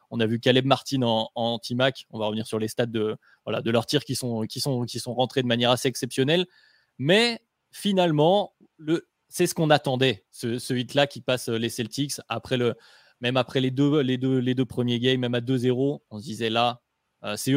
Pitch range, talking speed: 120-145 Hz, 220 wpm